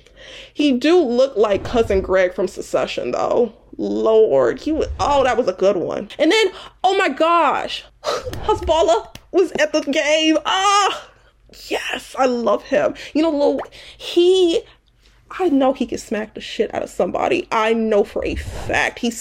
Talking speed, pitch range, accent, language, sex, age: 170 wpm, 220-305 Hz, American, English, female, 20-39